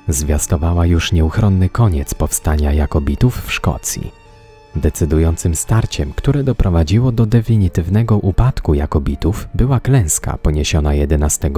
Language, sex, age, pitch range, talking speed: Polish, male, 30-49, 80-115 Hz, 105 wpm